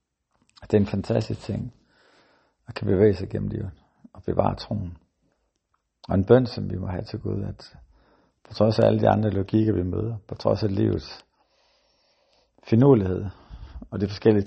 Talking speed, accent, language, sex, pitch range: 170 wpm, native, Danish, male, 90-110 Hz